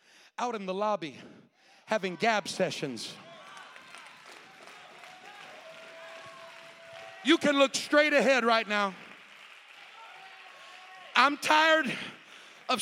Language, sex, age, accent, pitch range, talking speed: English, male, 50-69, American, 250-325 Hz, 80 wpm